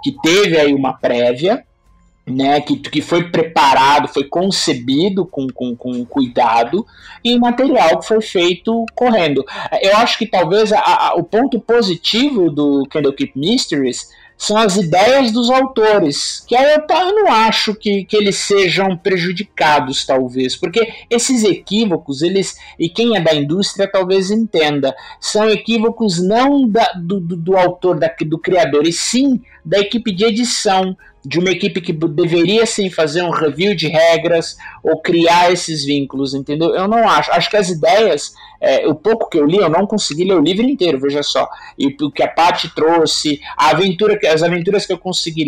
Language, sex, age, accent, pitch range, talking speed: Portuguese, male, 50-69, Brazilian, 150-215 Hz, 165 wpm